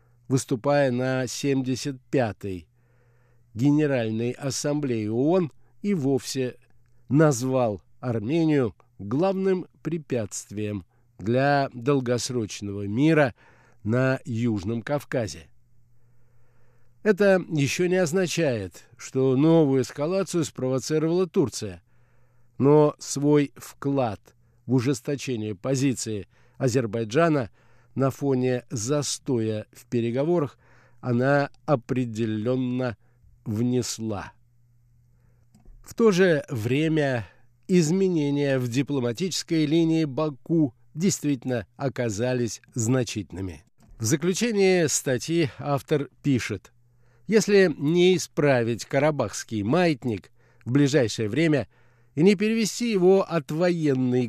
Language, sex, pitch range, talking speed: Russian, male, 120-150 Hz, 80 wpm